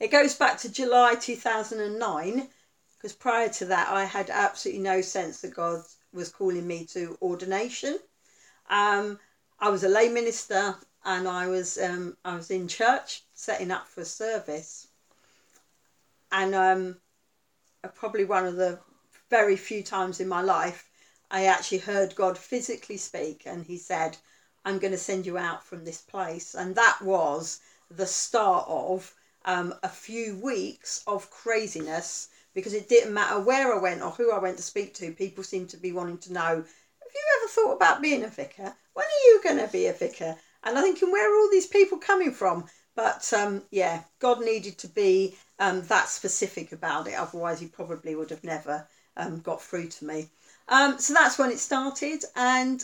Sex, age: female, 40-59